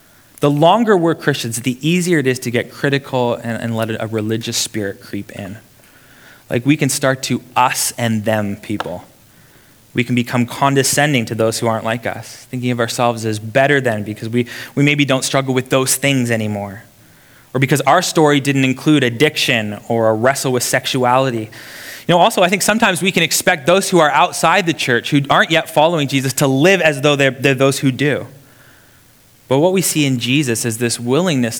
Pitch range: 115-150 Hz